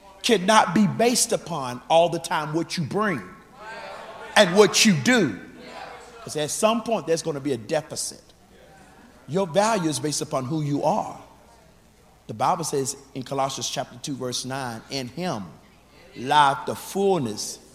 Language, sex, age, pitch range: English, male, 50-69, 145-215 Hz